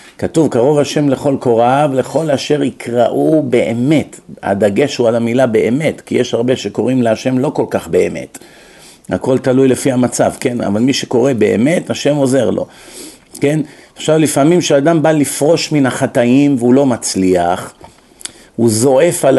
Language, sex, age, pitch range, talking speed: Hebrew, male, 50-69, 125-165 Hz, 150 wpm